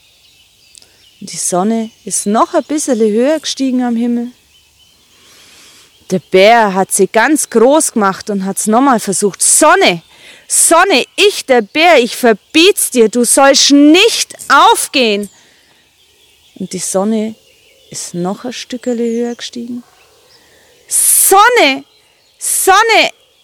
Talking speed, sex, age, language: 115 wpm, female, 30-49, German